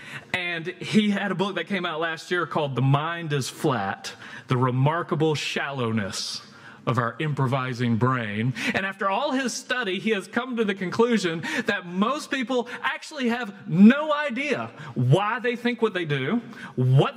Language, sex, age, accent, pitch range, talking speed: English, male, 40-59, American, 135-220 Hz, 165 wpm